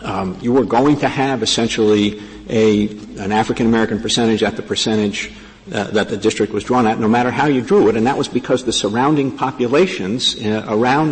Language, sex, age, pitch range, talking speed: English, male, 50-69, 105-125 Hz, 190 wpm